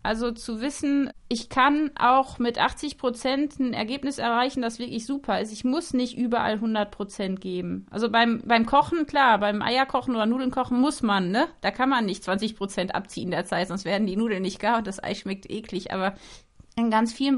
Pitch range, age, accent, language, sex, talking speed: 225-265 Hz, 30-49, German, German, female, 200 wpm